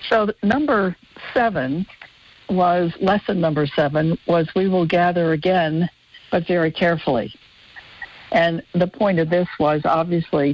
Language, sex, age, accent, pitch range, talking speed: English, female, 60-79, American, 155-185 Hz, 125 wpm